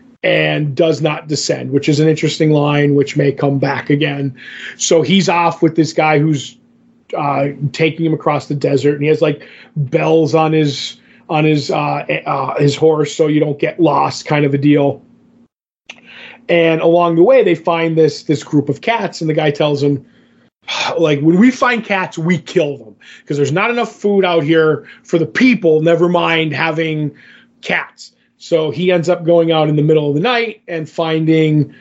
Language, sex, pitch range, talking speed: English, male, 150-170 Hz, 190 wpm